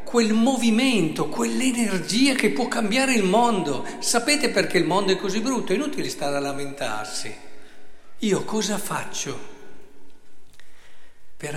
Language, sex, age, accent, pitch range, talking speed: Italian, male, 50-69, native, 140-210 Hz, 125 wpm